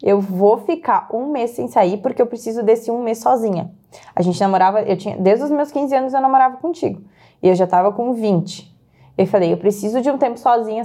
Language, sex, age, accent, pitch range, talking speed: Portuguese, female, 20-39, Brazilian, 205-280 Hz, 225 wpm